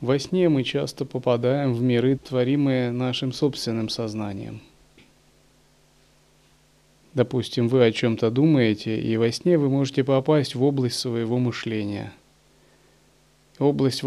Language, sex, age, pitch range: Russian, male, 30-49, 115-140 Hz